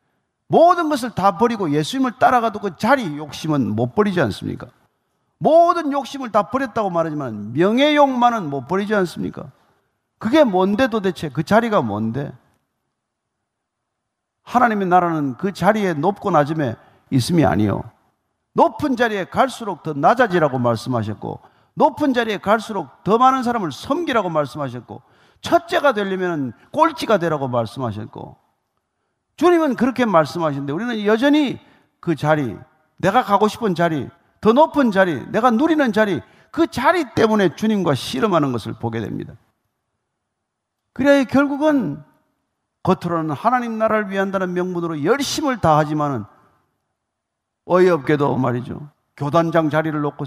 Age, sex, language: 50-69, male, Korean